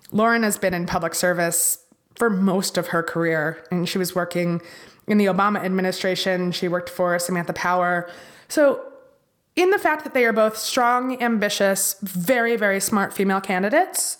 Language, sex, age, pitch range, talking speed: English, female, 20-39, 190-240 Hz, 165 wpm